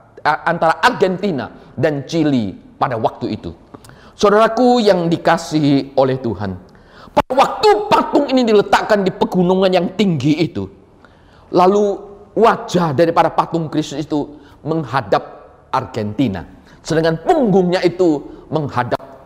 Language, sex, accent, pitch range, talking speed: Indonesian, male, native, 140-215 Hz, 105 wpm